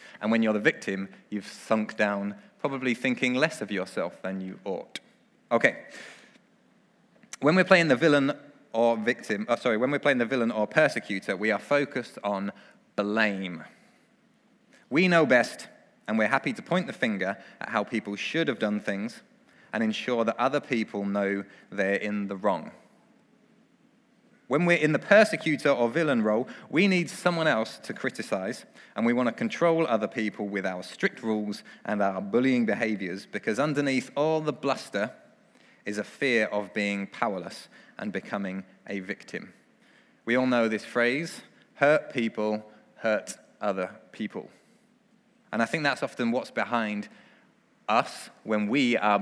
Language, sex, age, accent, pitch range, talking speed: English, male, 20-39, British, 105-165 Hz, 155 wpm